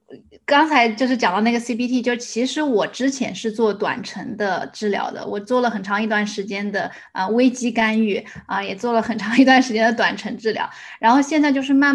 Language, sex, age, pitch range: Chinese, female, 20-39, 215-255 Hz